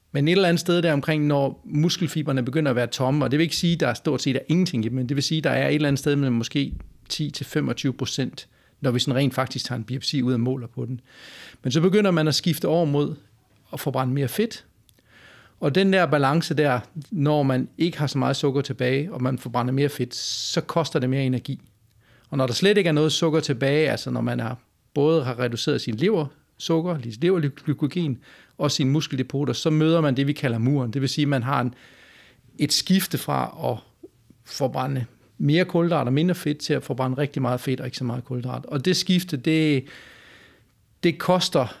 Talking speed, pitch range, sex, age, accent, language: 220 wpm, 125-155 Hz, male, 40-59, native, Danish